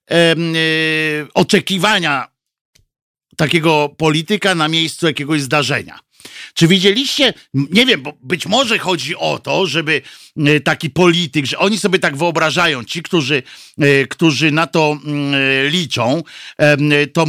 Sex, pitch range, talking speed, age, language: male, 140-190 Hz, 110 wpm, 50-69, Polish